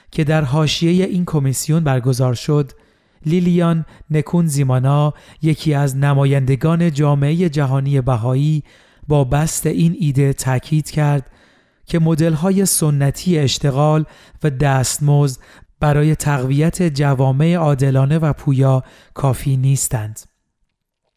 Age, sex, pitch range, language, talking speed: 40-59, male, 135-160 Hz, Persian, 100 wpm